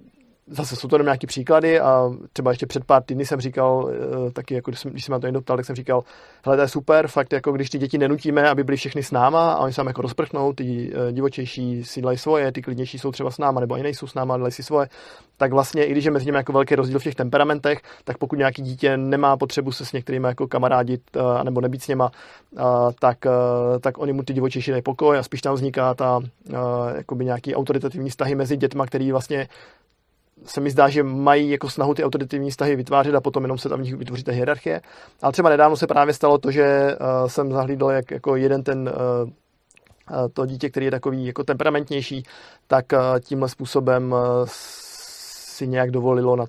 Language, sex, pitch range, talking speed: Czech, male, 125-145 Hz, 205 wpm